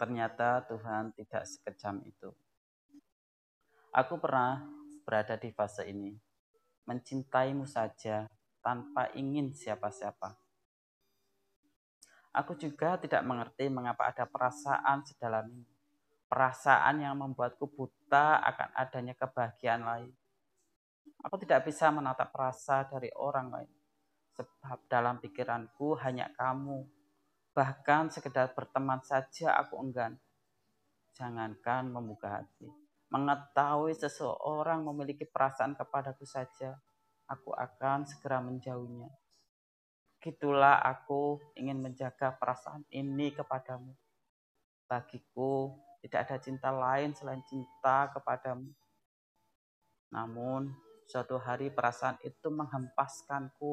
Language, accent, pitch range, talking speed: Indonesian, native, 120-140 Hz, 95 wpm